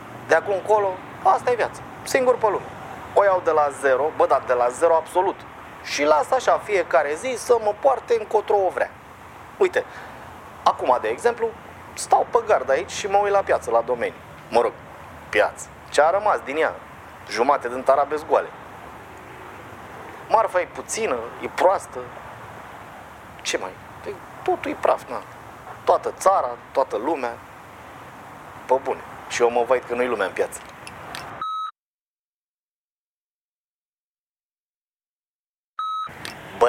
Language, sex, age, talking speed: Romanian, male, 30-49, 140 wpm